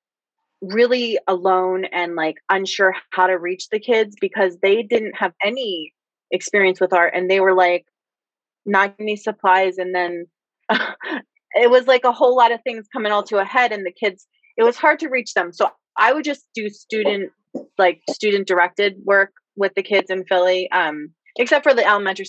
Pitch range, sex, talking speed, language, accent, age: 180-225 Hz, female, 190 wpm, English, American, 20-39